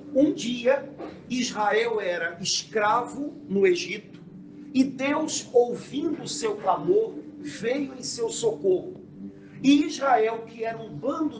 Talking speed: 120 wpm